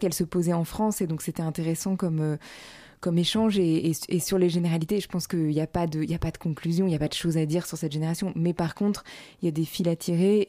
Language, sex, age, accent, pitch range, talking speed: French, female, 20-39, French, 165-185 Hz, 290 wpm